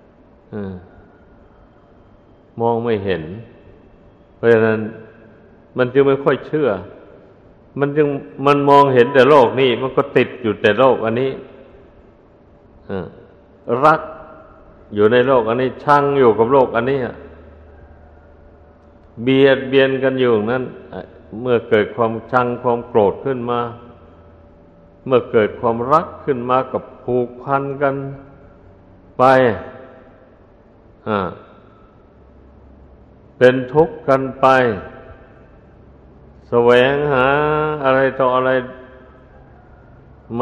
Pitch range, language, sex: 100-135 Hz, Thai, male